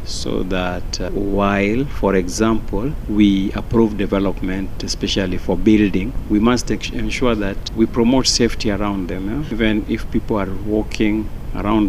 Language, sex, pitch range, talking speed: Swahili, male, 100-125 Hz, 145 wpm